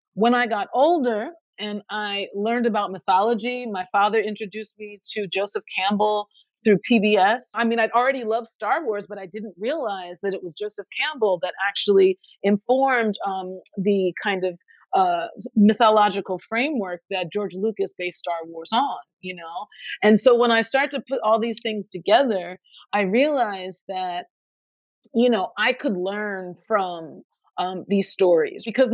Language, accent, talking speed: English, American, 160 wpm